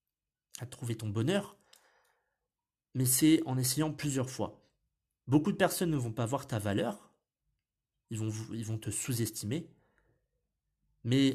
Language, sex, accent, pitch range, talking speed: French, male, French, 110-140 Hz, 135 wpm